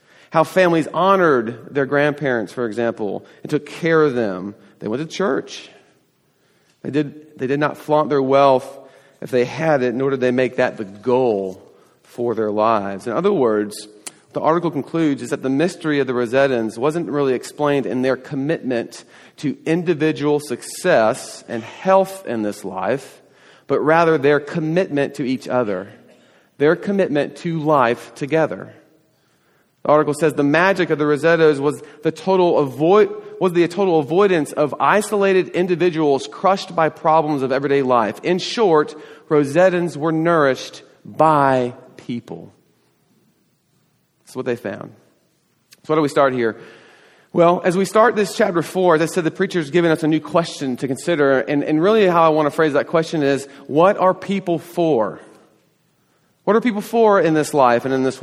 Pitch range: 130-170 Hz